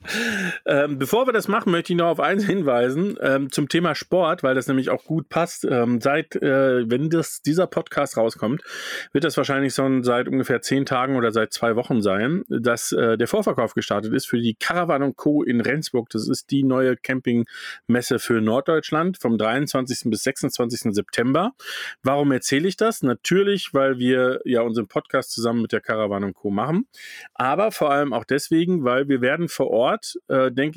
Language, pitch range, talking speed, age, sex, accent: German, 125-160 Hz, 180 wpm, 40-59, male, German